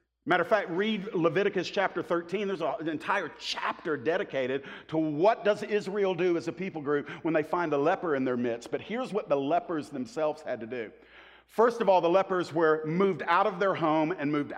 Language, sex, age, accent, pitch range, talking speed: English, male, 50-69, American, 165-235 Hz, 210 wpm